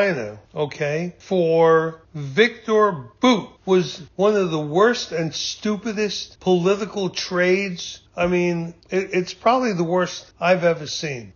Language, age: English, 60-79